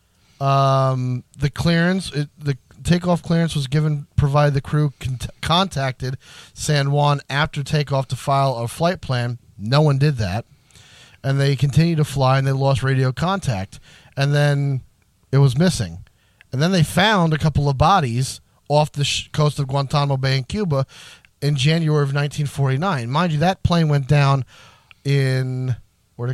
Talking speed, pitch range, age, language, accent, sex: 155 wpm, 130-155 Hz, 30-49, English, American, male